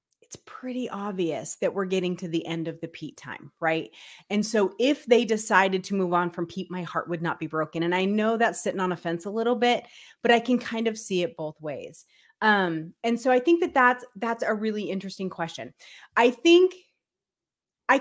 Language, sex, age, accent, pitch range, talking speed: English, female, 30-49, American, 175-230 Hz, 215 wpm